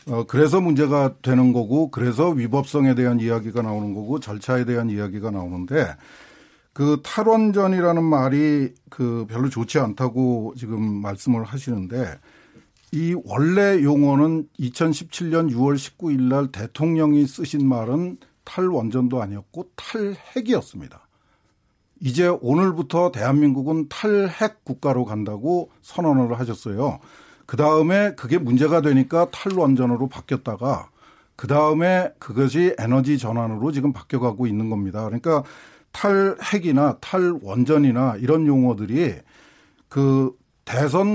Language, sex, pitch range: Korean, male, 125-170 Hz